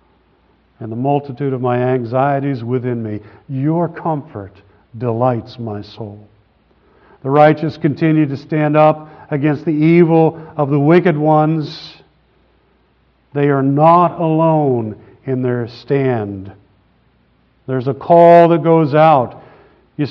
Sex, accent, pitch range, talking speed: male, American, 125-165 Hz, 120 wpm